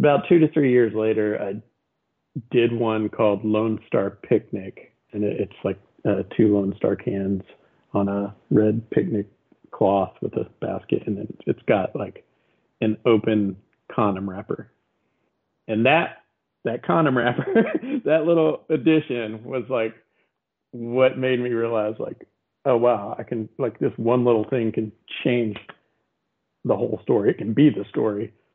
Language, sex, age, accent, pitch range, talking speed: English, male, 40-59, American, 105-120 Hz, 150 wpm